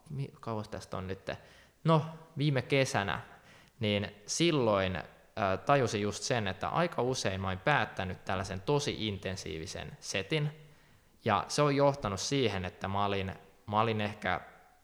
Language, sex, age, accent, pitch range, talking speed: Finnish, male, 20-39, native, 95-120 Hz, 140 wpm